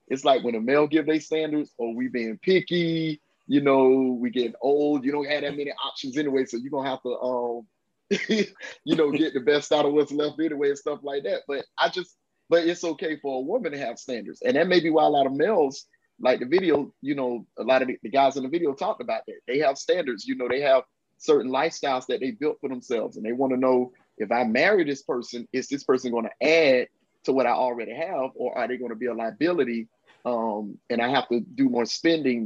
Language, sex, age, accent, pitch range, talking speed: English, male, 30-49, American, 125-160 Hz, 240 wpm